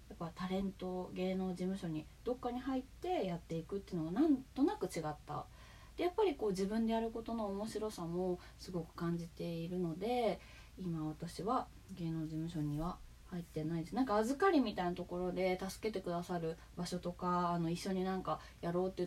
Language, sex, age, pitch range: Japanese, female, 20-39, 170-230 Hz